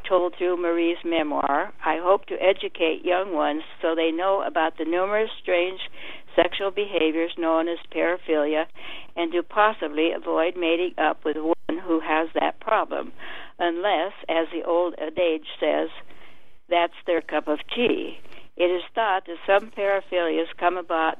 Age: 60-79